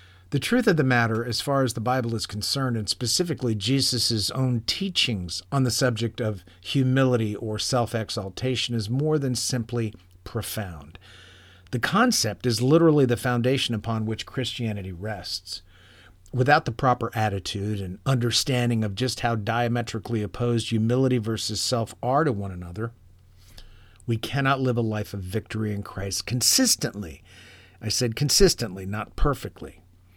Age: 50-69